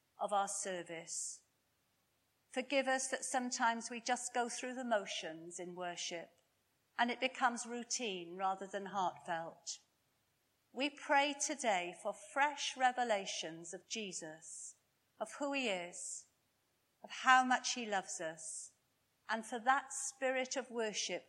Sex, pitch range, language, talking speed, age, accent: female, 175-250 Hz, English, 130 wpm, 40-59, British